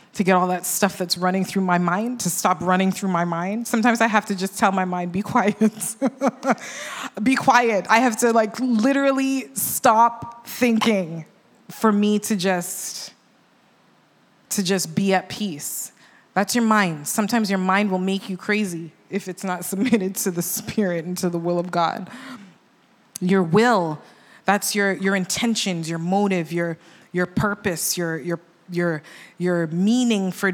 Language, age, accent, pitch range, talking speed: English, 20-39, American, 175-215 Hz, 165 wpm